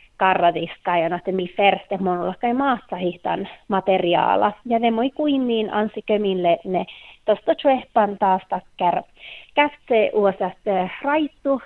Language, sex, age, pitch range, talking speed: Finnish, female, 30-49, 185-230 Hz, 125 wpm